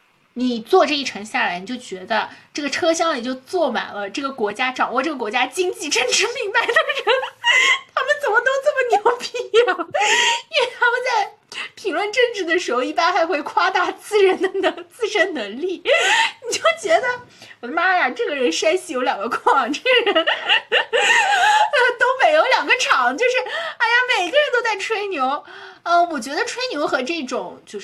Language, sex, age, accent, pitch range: Chinese, female, 20-39, native, 220-365 Hz